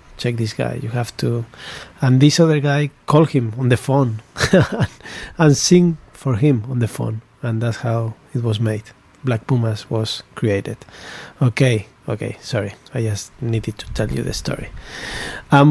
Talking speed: 170 wpm